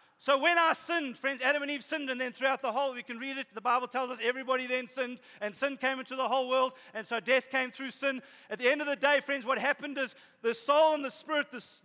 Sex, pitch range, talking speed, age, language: male, 225-270 Hz, 275 wpm, 40-59, English